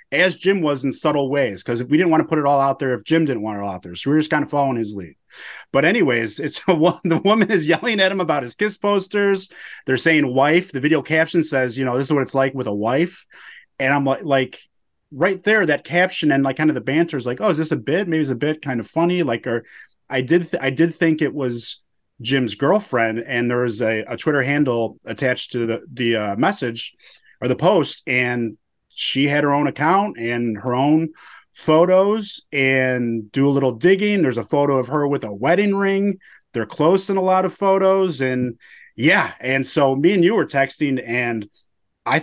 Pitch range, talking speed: 130-180 Hz, 230 wpm